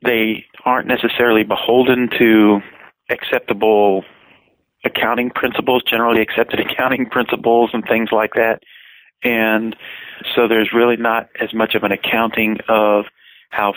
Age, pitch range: 40-59, 100-115 Hz